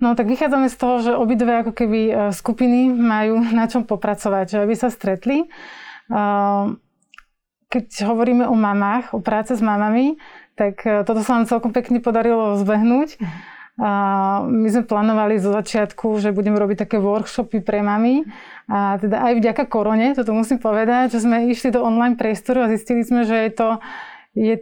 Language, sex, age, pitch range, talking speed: Slovak, female, 30-49, 210-235 Hz, 165 wpm